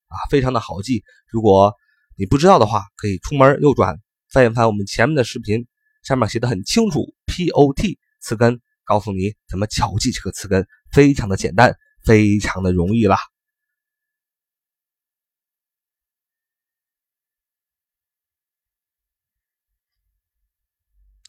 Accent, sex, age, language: native, male, 30-49, Chinese